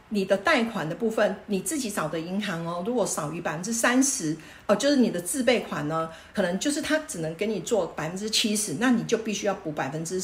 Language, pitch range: Chinese, 185-235 Hz